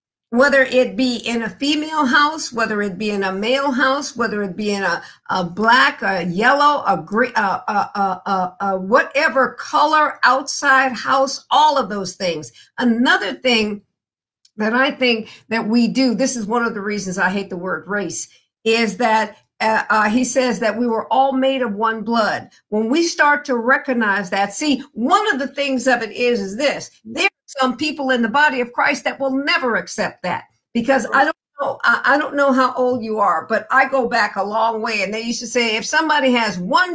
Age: 50-69